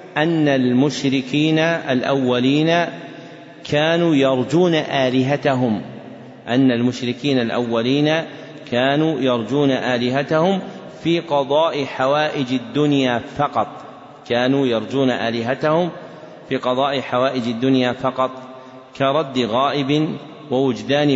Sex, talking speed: male, 80 wpm